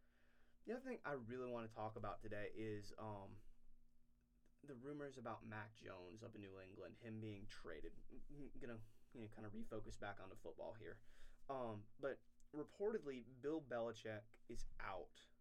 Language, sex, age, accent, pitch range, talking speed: English, male, 20-39, American, 105-120 Hz, 165 wpm